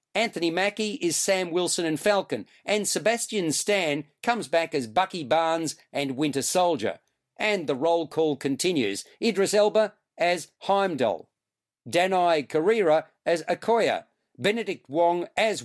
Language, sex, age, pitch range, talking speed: English, male, 50-69, 160-205 Hz, 130 wpm